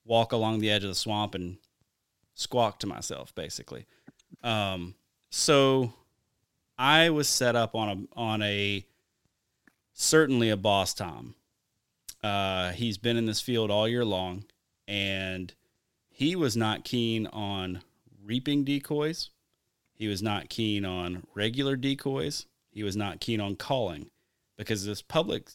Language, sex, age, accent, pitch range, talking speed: English, male, 30-49, American, 100-125 Hz, 140 wpm